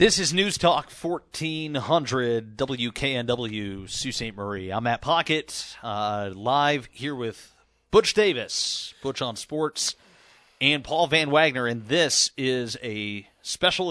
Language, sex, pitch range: English, male, 110-150 Hz